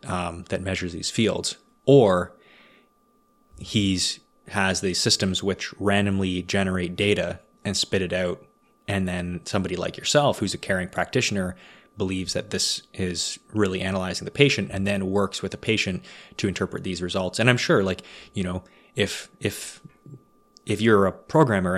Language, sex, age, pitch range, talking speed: English, male, 20-39, 90-100 Hz, 155 wpm